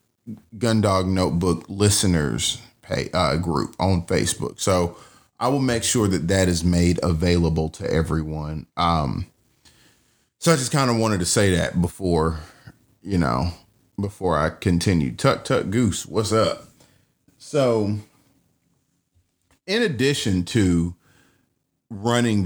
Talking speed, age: 125 wpm, 30-49